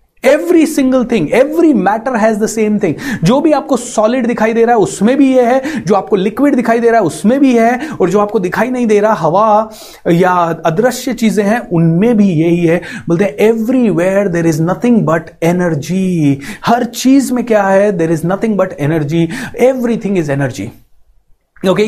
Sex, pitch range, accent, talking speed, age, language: male, 185-240 Hz, native, 180 wpm, 30-49, Hindi